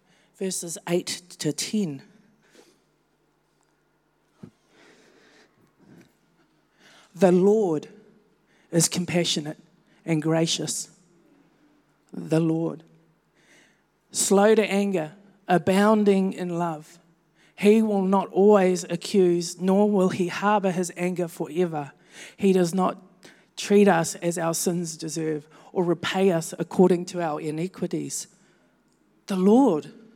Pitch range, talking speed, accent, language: 170-200 Hz, 95 wpm, Australian, English